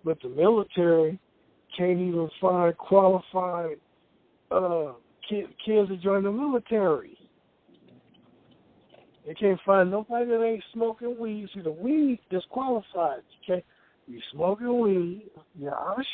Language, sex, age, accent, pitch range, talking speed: English, male, 60-79, American, 145-210 Hz, 125 wpm